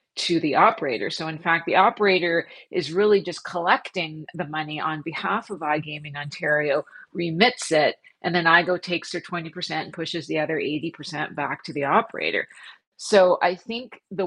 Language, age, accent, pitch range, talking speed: English, 40-59, American, 155-175 Hz, 170 wpm